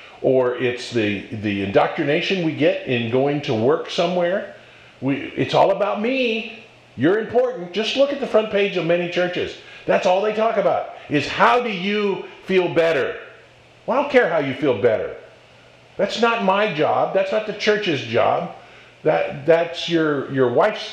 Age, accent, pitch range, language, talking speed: 50-69, American, 140-210 Hz, English, 175 wpm